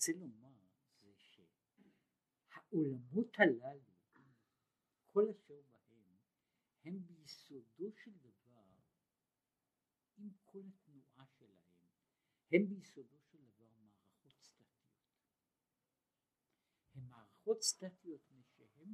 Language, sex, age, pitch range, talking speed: Hebrew, male, 60-79, 125-200 Hz, 85 wpm